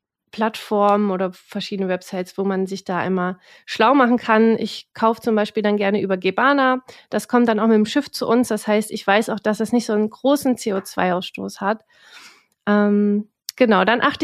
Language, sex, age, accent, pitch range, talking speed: German, female, 30-49, German, 205-235 Hz, 195 wpm